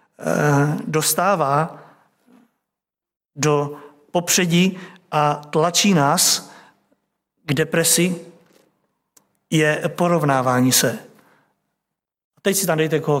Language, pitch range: Czech, 155-220 Hz